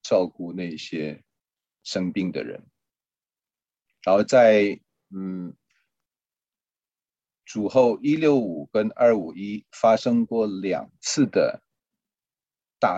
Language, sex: Chinese, male